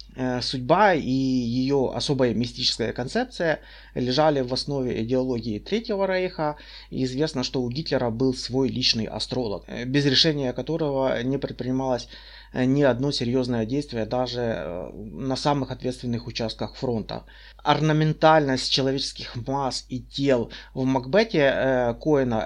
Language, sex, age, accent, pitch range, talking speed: Russian, male, 30-49, native, 125-140 Hz, 115 wpm